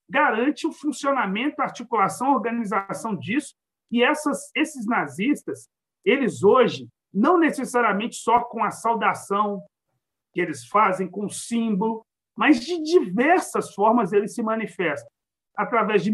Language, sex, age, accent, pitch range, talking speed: Portuguese, male, 50-69, Brazilian, 200-255 Hz, 130 wpm